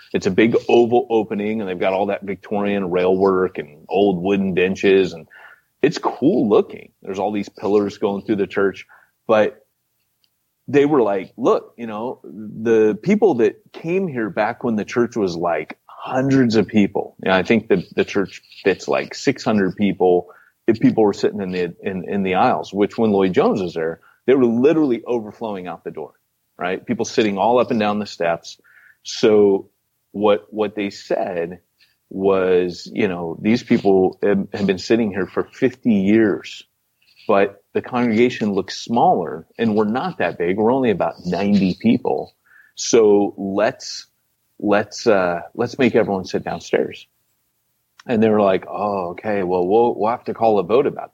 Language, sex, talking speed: English, male, 175 wpm